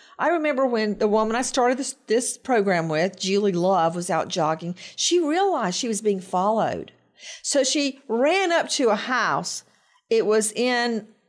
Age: 50-69